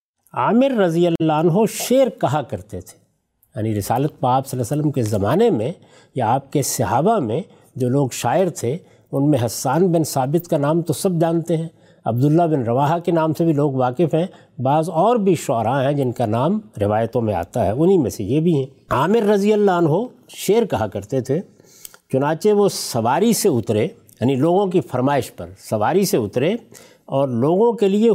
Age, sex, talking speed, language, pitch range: 60-79, male, 195 wpm, Urdu, 130-190 Hz